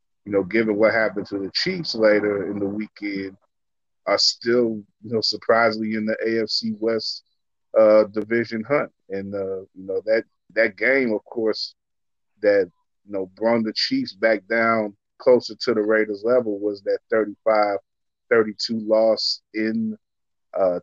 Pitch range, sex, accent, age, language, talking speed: 100-115 Hz, male, American, 30-49, English, 150 wpm